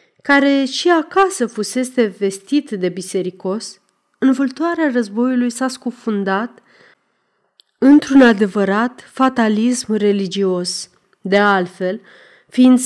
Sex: female